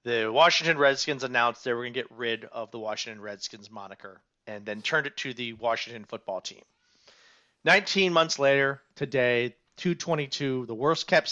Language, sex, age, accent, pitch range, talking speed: English, male, 40-59, American, 120-165 Hz, 170 wpm